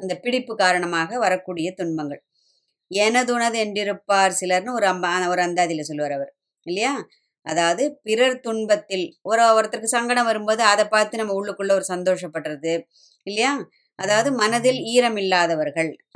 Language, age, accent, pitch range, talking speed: Tamil, 20-39, native, 180-225 Hz, 125 wpm